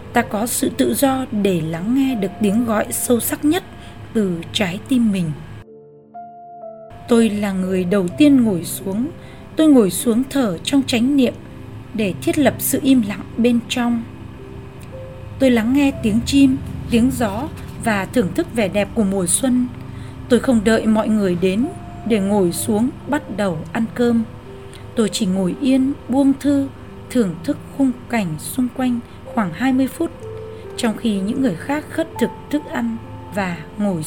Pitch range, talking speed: 195-260 Hz, 165 wpm